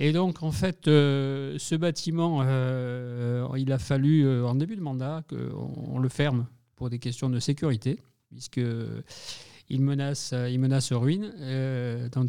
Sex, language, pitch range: male, French, 125-150 Hz